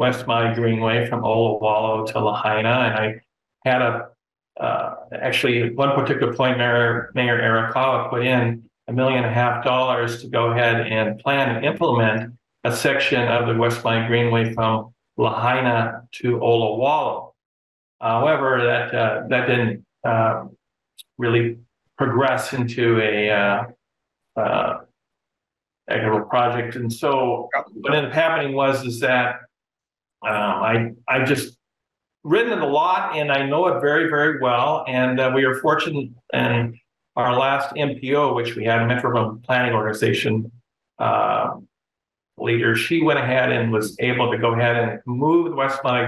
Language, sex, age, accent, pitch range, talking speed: English, male, 50-69, American, 115-130 Hz, 150 wpm